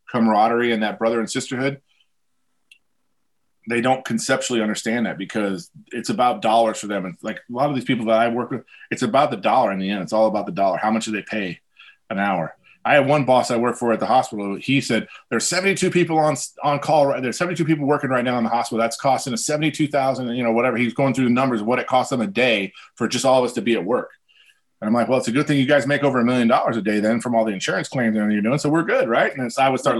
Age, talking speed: 30-49, 275 wpm